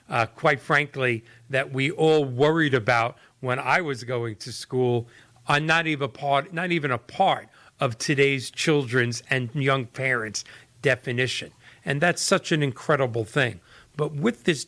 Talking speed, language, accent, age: 145 wpm, English, American, 40-59